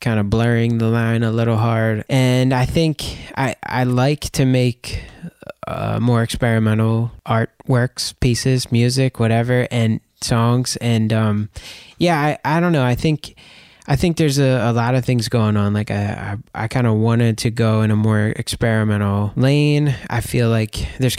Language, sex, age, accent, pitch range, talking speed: English, male, 20-39, American, 105-125 Hz, 175 wpm